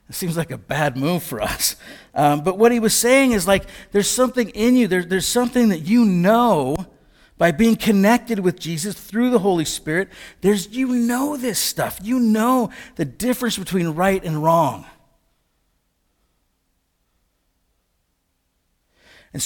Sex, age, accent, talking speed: male, 50-69, American, 150 wpm